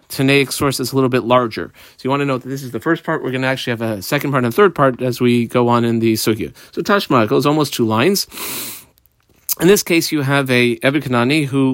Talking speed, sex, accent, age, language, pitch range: 260 wpm, male, American, 40-59, English, 120-165 Hz